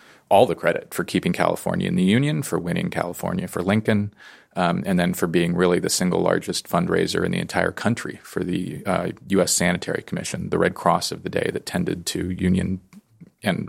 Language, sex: English, male